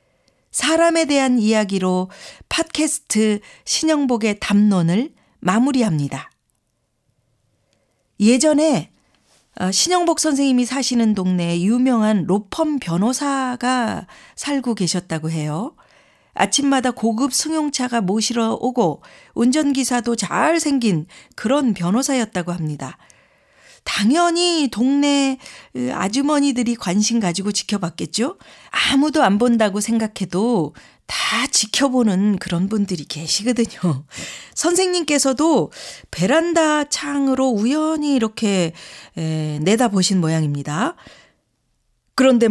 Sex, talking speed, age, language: female, 75 wpm, 40-59, English